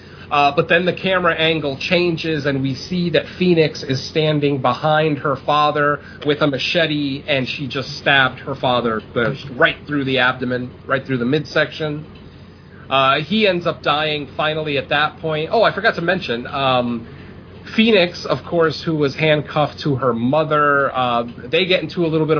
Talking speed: 175 wpm